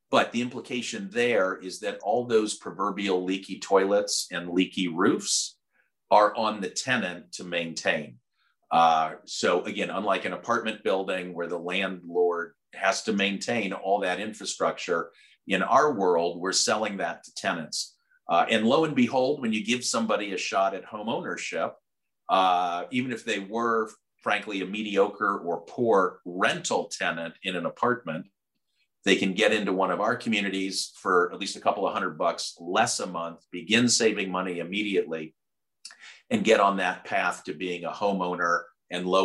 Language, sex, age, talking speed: English, male, 40-59, 165 wpm